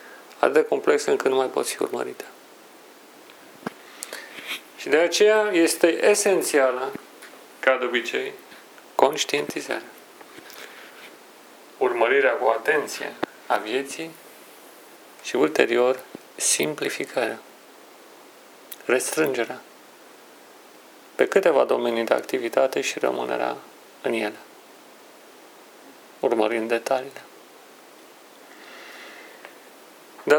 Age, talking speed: 40-59, 80 wpm